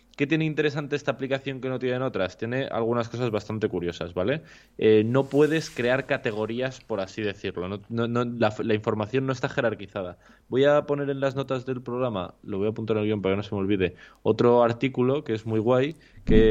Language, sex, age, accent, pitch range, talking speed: Spanish, male, 20-39, Spanish, 105-130 Hz, 205 wpm